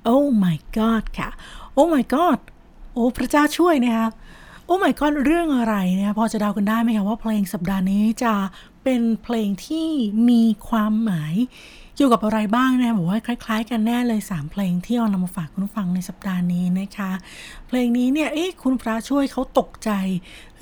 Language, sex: Thai, female